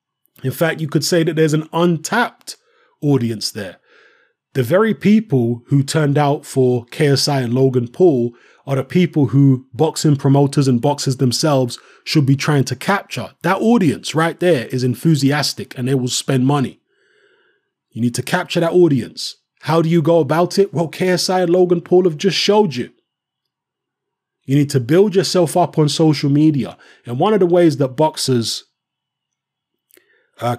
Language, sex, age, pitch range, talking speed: English, male, 20-39, 130-170 Hz, 165 wpm